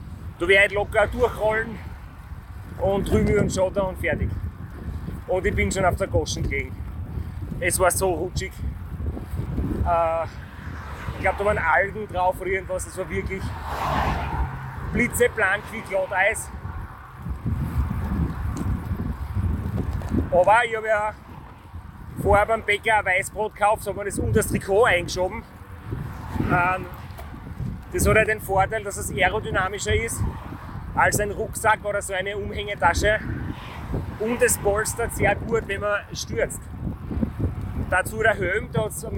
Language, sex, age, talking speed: German, male, 30-49, 135 wpm